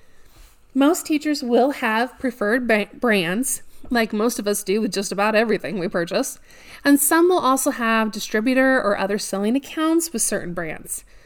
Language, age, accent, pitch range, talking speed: English, 30-49, American, 200-270 Hz, 160 wpm